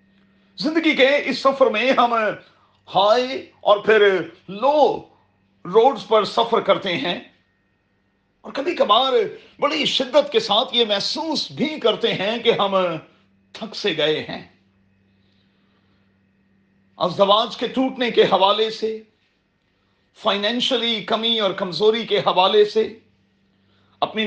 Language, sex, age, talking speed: Urdu, male, 40-59, 110 wpm